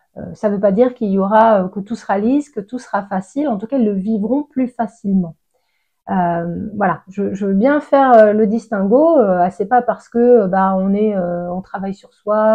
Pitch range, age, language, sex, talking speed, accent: 190-225 Hz, 30-49, French, female, 210 wpm, French